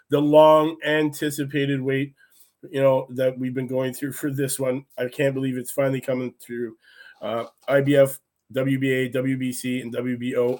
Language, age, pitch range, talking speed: English, 20-39, 140-165 Hz, 145 wpm